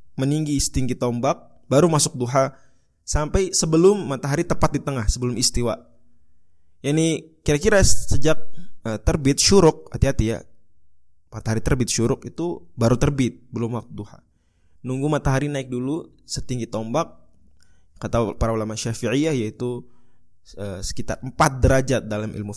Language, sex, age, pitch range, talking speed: Indonesian, male, 20-39, 110-140 Hz, 130 wpm